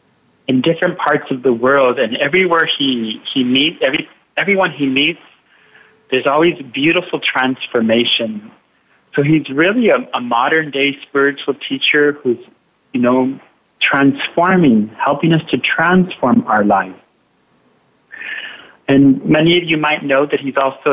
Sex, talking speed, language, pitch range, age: male, 130 wpm, English, 130-180 Hz, 40-59